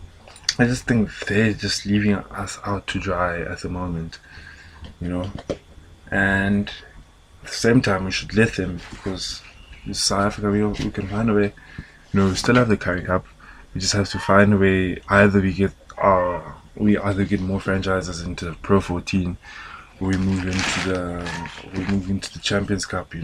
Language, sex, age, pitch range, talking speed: English, male, 20-39, 90-100 Hz, 190 wpm